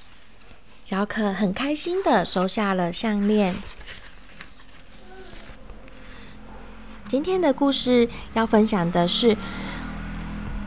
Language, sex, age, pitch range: Chinese, female, 20-39, 190-260 Hz